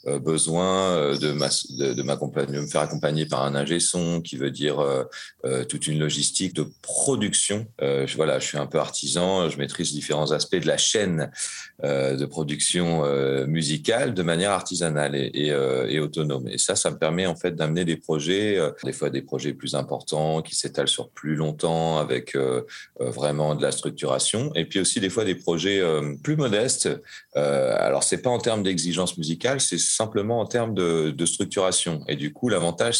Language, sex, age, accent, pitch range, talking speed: French, male, 40-59, French, 75-95 Hz, 200 wpm